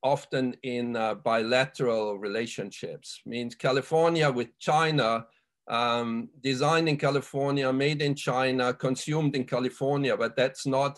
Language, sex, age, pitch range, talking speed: English, male, 50-69, 125-150 Hz, 120 wpm